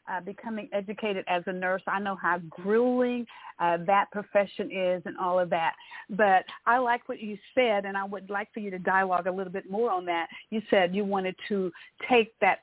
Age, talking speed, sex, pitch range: 50-69, 215 wpm, female, 185-230 Hz